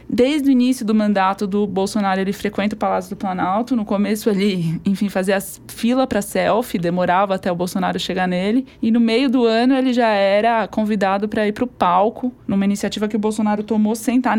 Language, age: Portuguese, 20-39